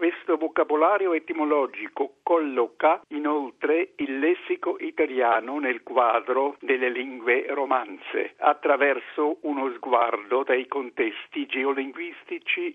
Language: Italian